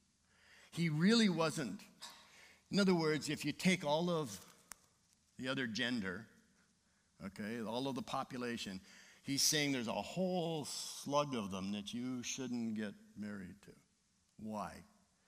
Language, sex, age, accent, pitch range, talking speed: English, male, 60-79, American, 140-200 Hz, 135 wpm